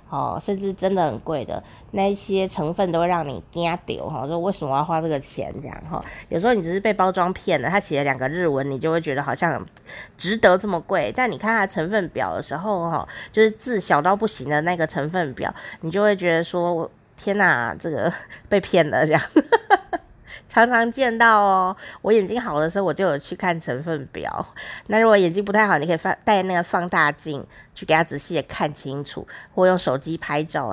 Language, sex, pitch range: Chinese, female, 155-205 Hz